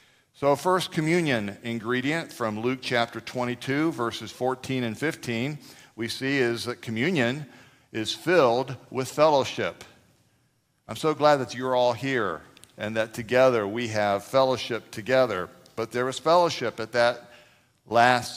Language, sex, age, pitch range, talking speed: English, male, 50-69, 115-135 Hz, 135 wpm